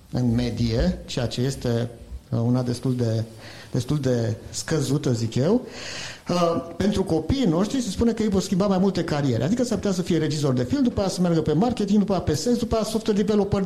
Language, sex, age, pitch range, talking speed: Romanian, male, 50-69, 135-190 Hz, 210 wpm